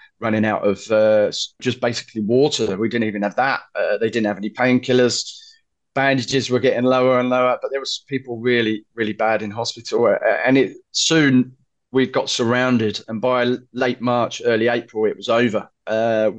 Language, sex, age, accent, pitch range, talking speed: English, male, 30-49, British, 110-125 Hz, 185 wpm